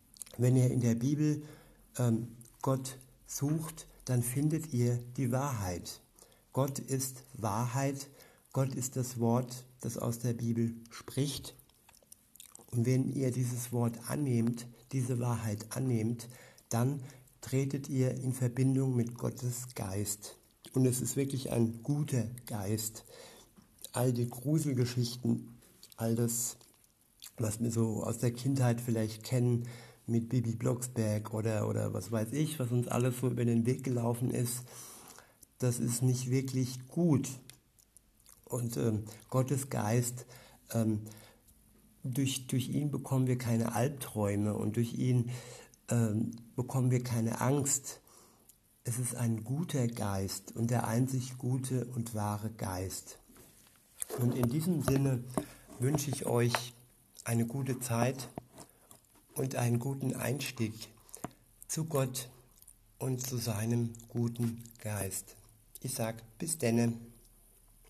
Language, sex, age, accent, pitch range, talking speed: German, male, 60-79, German, 115-130 Hz, 125 wpm